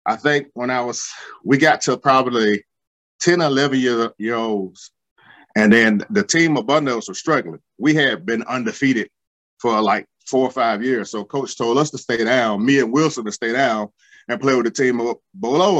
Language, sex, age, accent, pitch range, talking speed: English, male, 30-49, American, 105-140 Hz, 190 wpm